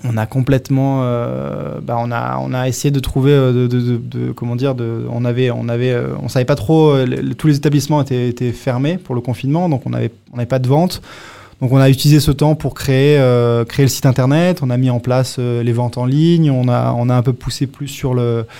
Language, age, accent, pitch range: French, 20-39, French, 120-140 Hz